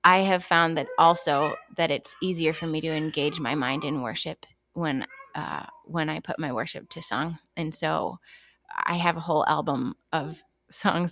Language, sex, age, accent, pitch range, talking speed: English, female, 20-39, American, 145-170 Hz, 185 wpm